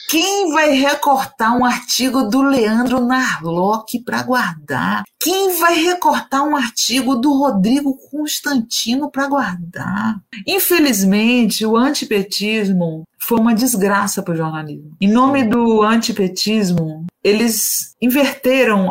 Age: 40-59